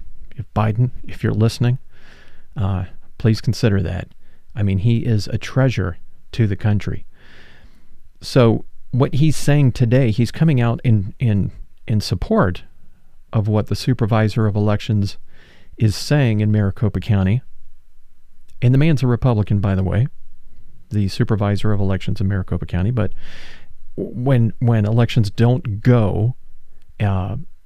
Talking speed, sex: 135 wpm, male